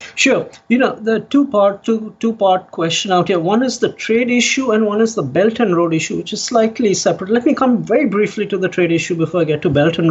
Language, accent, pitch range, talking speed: English, Indian, 175-225 Hz, 260 wpm